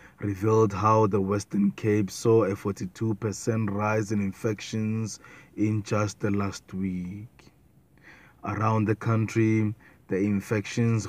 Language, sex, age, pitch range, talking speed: English, male, 20-39, 100-110 Hz, 115 wpm